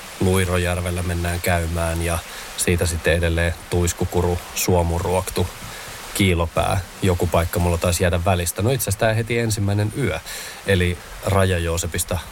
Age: 30-49